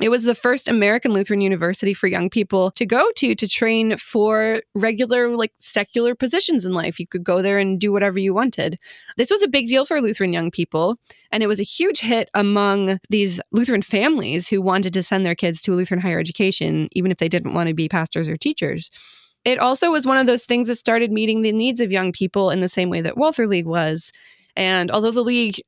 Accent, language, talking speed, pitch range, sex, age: American, English, 230 wpm, 185-235 Hz, female, 20-39